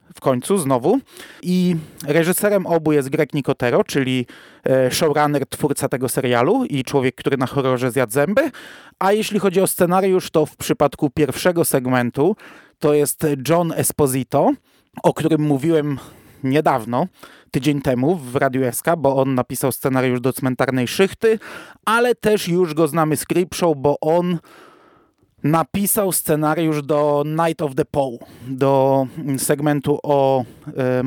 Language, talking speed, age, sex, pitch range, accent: Polish, 135 wpm, 30-49, male, 135-175 Hz, native